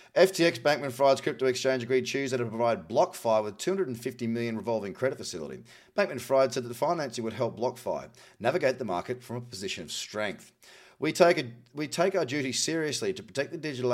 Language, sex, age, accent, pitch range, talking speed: English, male, 30-49, Australian, 120-160 Hz, 195 wpm